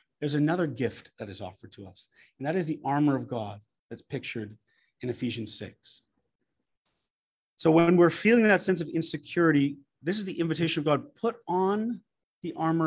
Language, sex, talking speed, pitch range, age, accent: English, male, 175 wpm, 135-190 Hz, 30-49, American